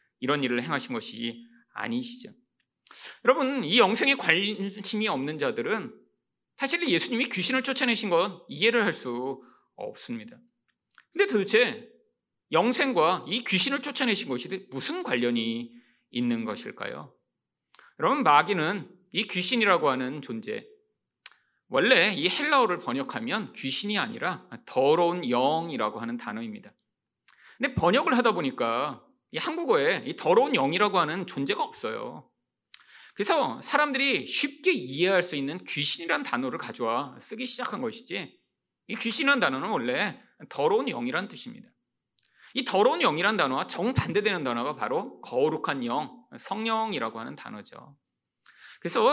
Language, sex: Korean, male